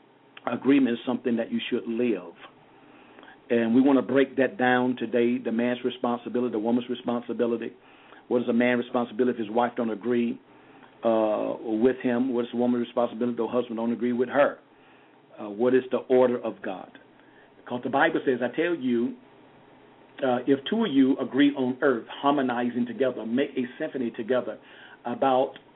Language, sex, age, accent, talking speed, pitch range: English, male, 50-69, American, 175 wpm, 120-155 Hz